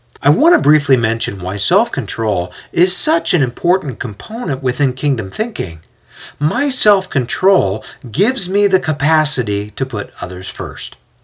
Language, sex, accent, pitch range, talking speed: English, male, American, 115-155 Hz, 135 wpm